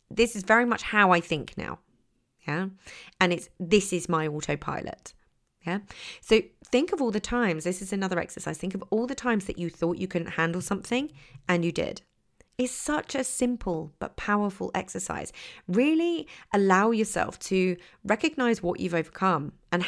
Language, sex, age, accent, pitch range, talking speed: English, female, 30-49, British, 175-245 Hz, 170 wpm